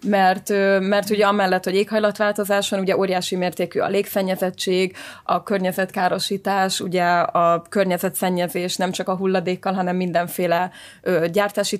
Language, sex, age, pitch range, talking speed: Hungarian, female, 20-39, 185-200 Hz, 115 wpm